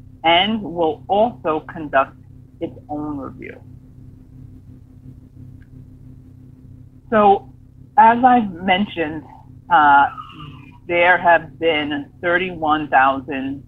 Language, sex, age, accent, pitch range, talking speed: English, female, 40-59, American, 125-160 Hz, 70 wpm